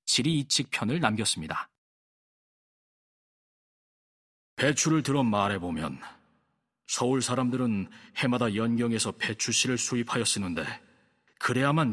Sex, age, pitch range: male, 40-59, 115-150 Hz